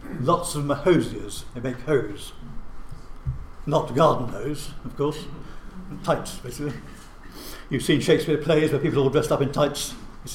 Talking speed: 150 wpm